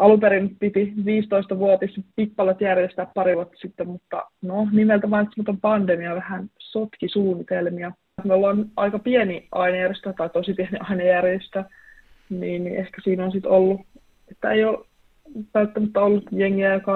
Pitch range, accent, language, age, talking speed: 185-210 Hz, native, Finnish, 20-39, 140 wpm